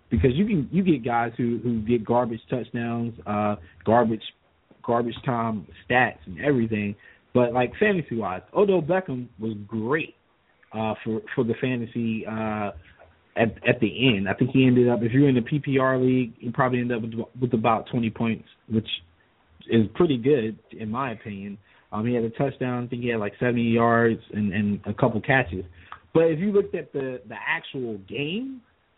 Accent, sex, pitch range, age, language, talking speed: American, male, 110-140 Hz, 30-49, English, 185 wpm